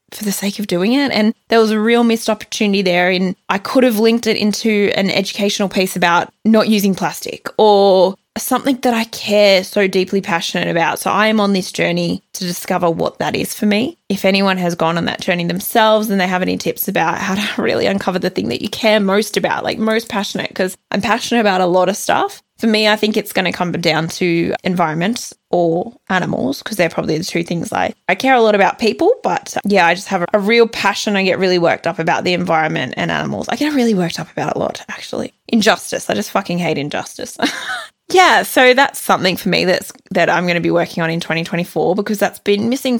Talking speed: 235 wpm